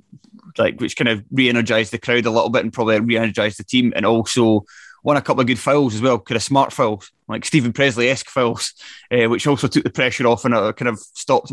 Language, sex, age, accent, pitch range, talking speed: English, male, 20-39, British, 115-135 Hz, 235 wpm